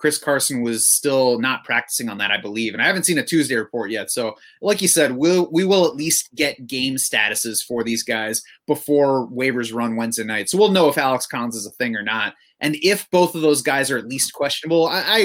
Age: 30-49